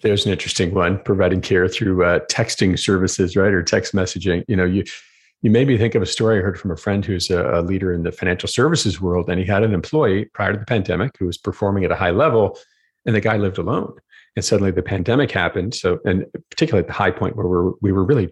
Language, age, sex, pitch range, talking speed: English, 40-59, male, 90-110 Hz, 250 wpm